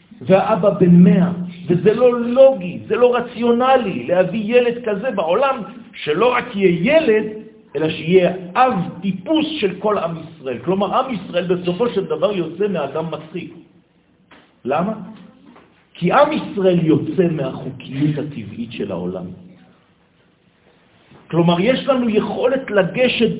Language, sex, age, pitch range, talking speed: French, male, 50-69, 175-235 Hz, 120 wpm